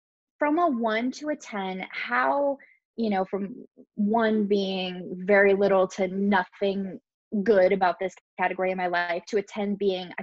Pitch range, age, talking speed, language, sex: 190-245 Hz, 20-39, 165 wpm, English, female